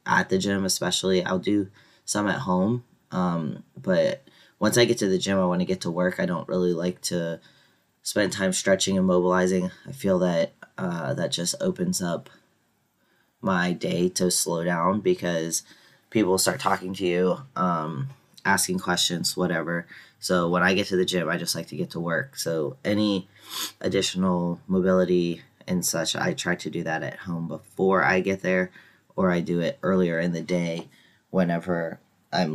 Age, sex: 20-39, male